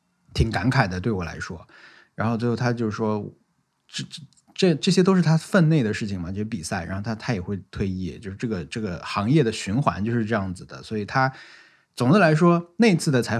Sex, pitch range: male, 105-130 Hz